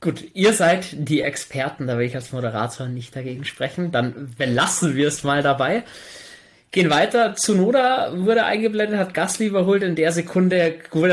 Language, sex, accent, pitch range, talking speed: German, male, German, 130-165 Hz, 165 wpm